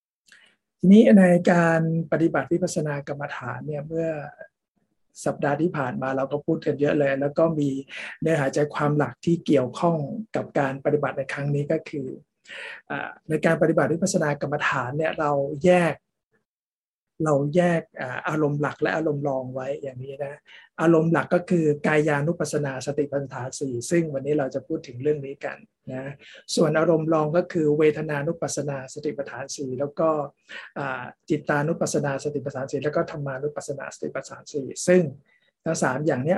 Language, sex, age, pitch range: Thai, male, 60-79, 140-165 Hz